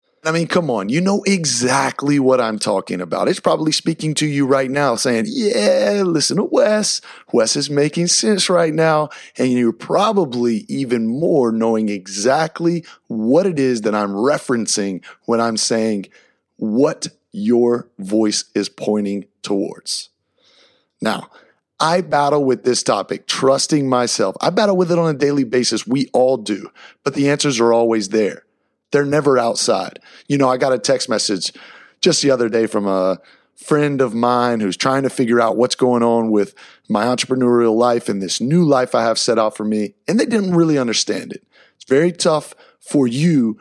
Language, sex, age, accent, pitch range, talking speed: English, male, 30-49, American, 115-155 Hz, 175 wpm